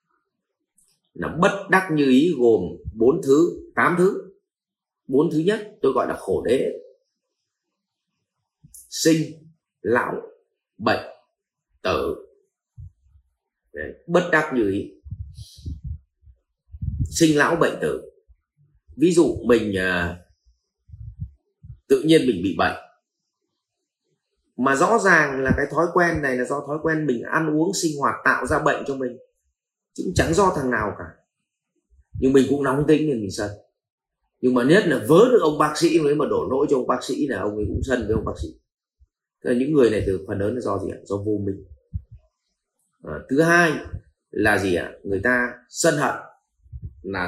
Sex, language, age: male, Vietnamese, 30-49